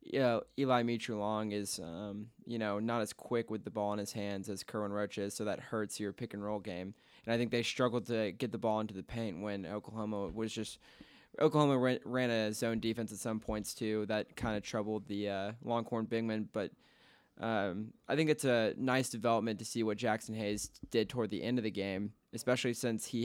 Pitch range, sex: 105-115 Hz, male